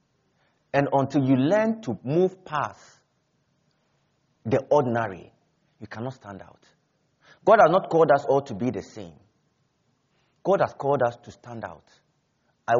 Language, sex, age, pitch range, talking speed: English, male, 30-49, 115-160 Hz, 145 wpm